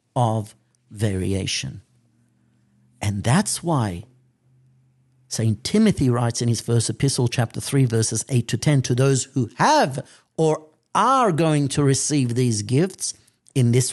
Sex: male